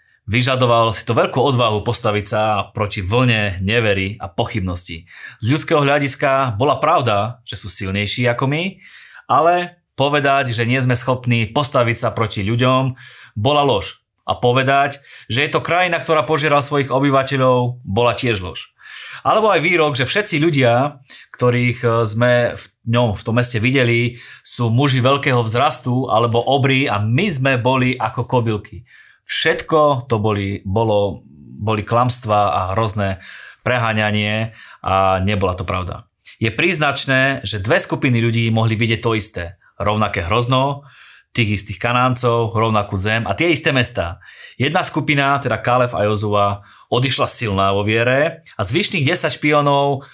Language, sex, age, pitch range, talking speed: Slovak, male, 30-49, 105-135 Hz, 145 wpm